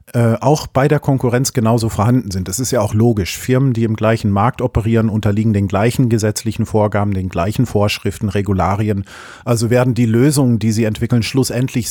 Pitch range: 105-130 Hz